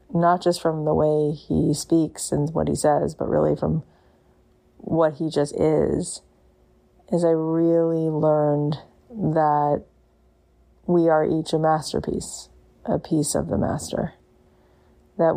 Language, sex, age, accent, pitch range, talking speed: English, female, 30-49, American, 145-165 Hz, 135 wpm